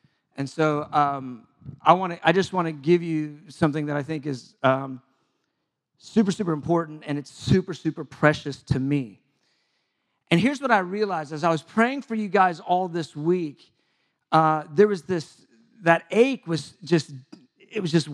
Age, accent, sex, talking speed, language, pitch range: 40-59, American, male, 175 wpm, English, 155-195 Hz